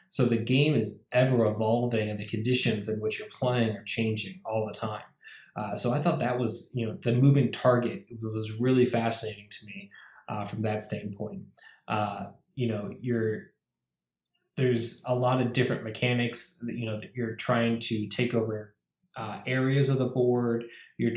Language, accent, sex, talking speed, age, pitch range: English, American, male, 180 wpm, 20-39, 110-125 Hz